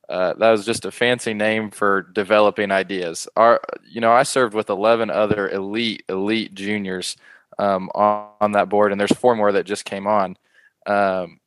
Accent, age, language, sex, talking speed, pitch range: American, 20-39, English, male, 185 wpm, 100-110 Hz